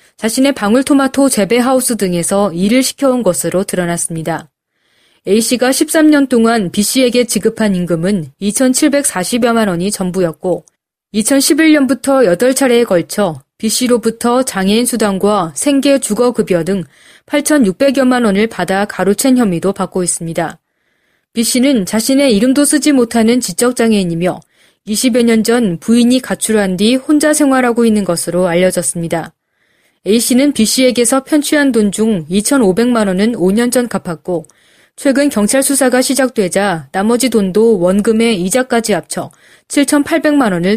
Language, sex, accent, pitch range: Korean, female, native, 185-260 Hz